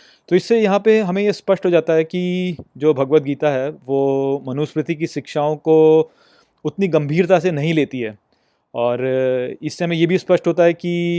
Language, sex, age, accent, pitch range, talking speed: Hindi, male, 30-49, native, 140-170 Hz, 190 wpm